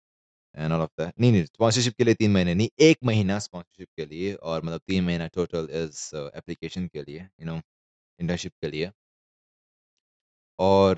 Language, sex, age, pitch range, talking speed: Hindi, male, 20-39, 80-100 Hz, 95 wpm